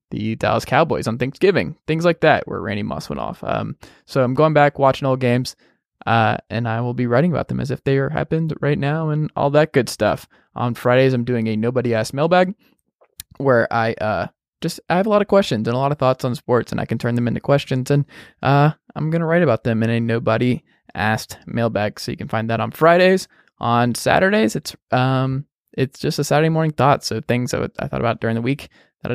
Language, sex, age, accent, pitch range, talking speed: English, male, 20-39, American, 115-145 Hz, 235 wpm